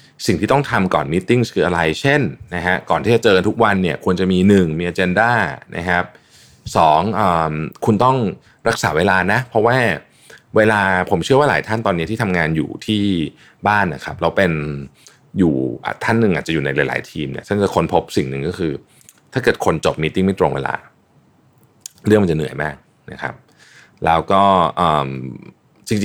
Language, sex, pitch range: Thai, male, 80-110 Hz